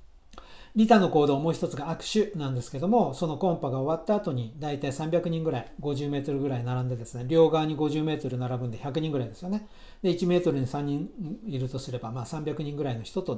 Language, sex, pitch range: Japanese, male, 125-165 Hz